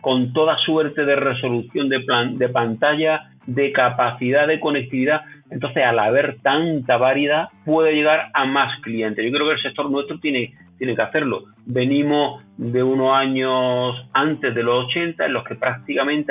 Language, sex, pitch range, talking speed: English, male, 125-150 Hz, 165 wpm